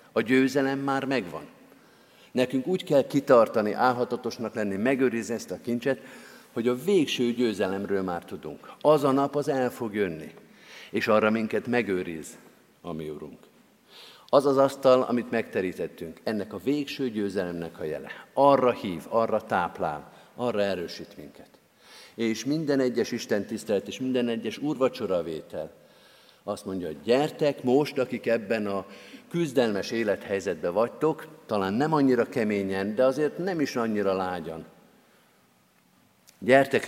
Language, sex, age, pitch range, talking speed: Hungarian, male, 50-69, 105-135 Hz, 130 wpm